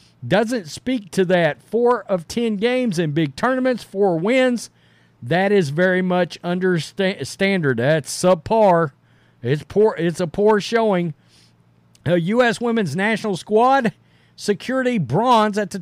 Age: 50-69